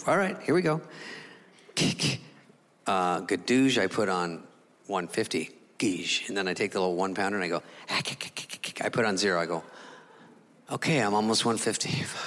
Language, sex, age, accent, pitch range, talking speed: English, male, 40-59, American, 120-200 Hz, 165 wpm